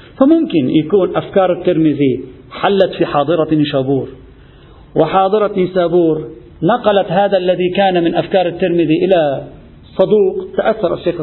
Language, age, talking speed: Arabic, 50-69, 110 wpm